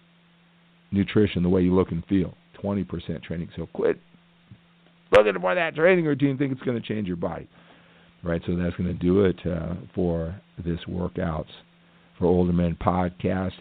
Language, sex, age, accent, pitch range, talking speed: English, male, 50-69, American, 90-120 Hz, 170 wpm